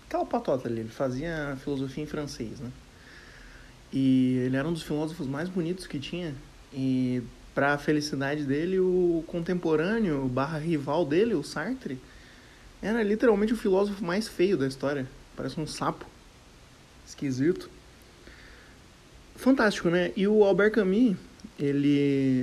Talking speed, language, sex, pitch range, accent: 135 wpm, Portuguese, male, 135-175 Hz, Brazilian